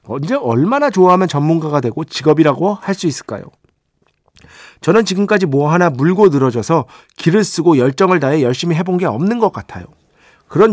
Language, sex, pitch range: Korean, male, 130-190 Hz